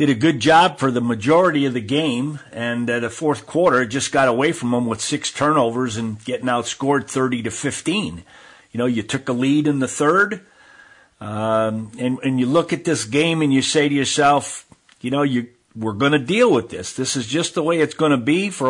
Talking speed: 225 wpm